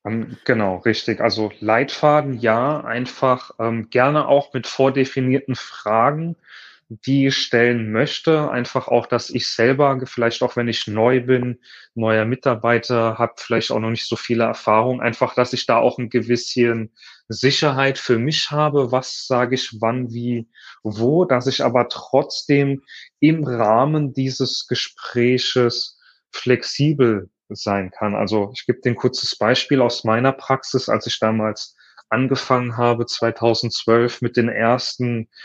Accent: German